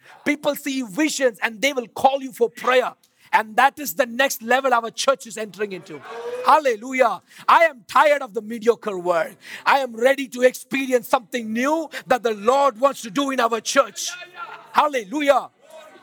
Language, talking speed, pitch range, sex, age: English, 170 wpm, 200-265 Hz, male, 50-69